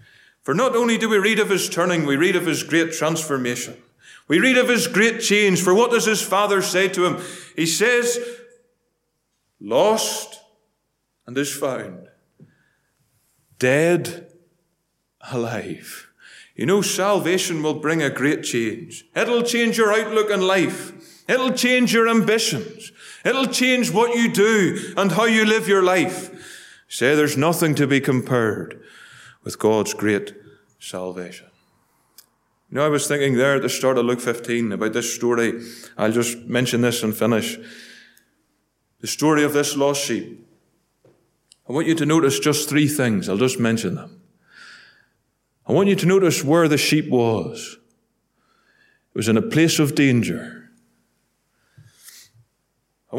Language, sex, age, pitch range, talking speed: English, male, 30-49, 130-210 Hz, 150 wpm